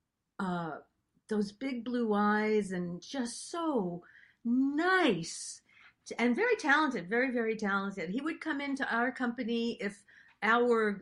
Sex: female